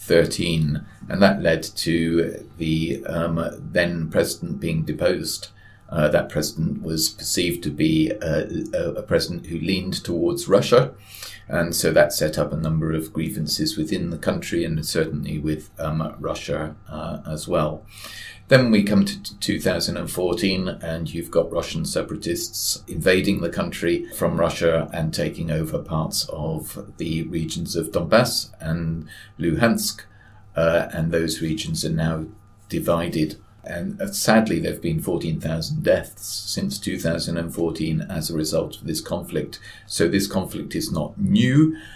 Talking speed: 140 wpm